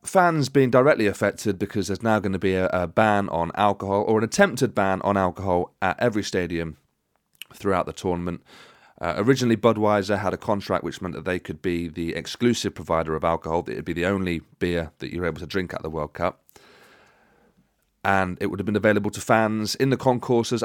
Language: English